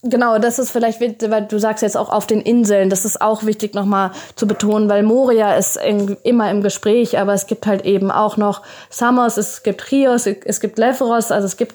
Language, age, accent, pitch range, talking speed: German, 20-39, German, 205-235 Hz, 215 wpm